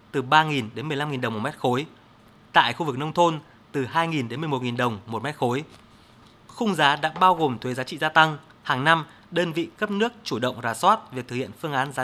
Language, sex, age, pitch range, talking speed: Vietnamese, male, 20-39, 125-170 Hz, 235 wpm